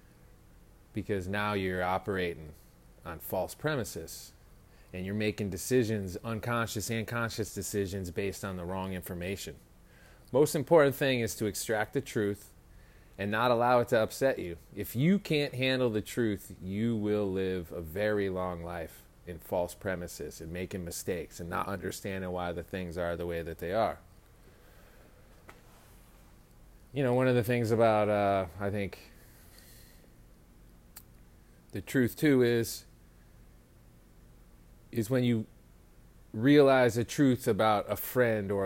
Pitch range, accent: 90-120 Hz, American